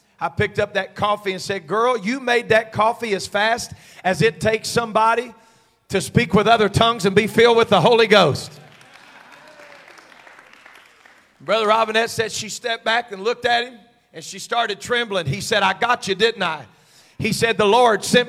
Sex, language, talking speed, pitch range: male, English, 185 wpm, 200-240 Hz